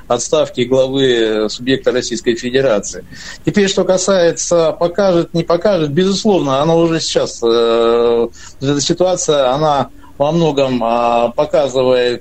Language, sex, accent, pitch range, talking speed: Russian, male, native, 135-170 Hz, 115 wpm